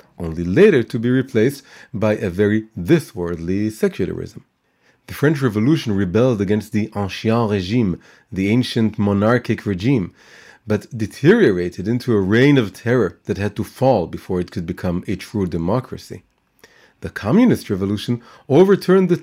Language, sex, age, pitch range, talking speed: English, male, 40-59, 105-145 Hz, 140 wpm